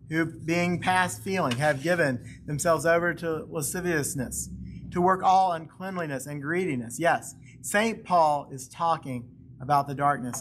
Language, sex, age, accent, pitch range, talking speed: English, male, 40-59, American, 130-165 Hz, 140 wpm